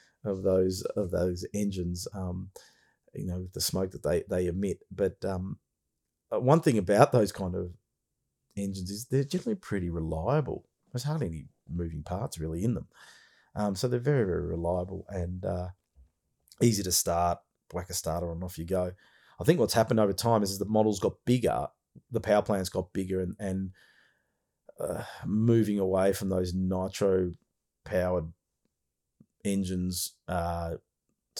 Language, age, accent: English, 30-49, Australian